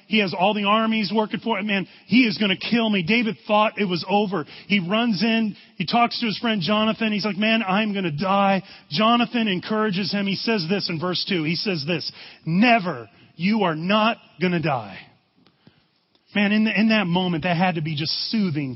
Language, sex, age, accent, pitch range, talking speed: English, male, 30-49, American, 175-220 Hz, 210 wpm